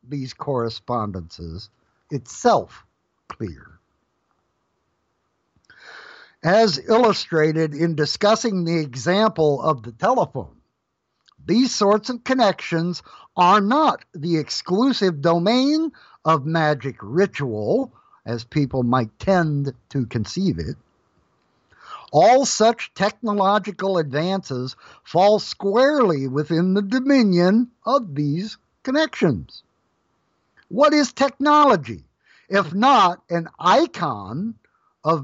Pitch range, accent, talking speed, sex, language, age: 155-245 Hz, American, 90 wpm, male, English, 60-79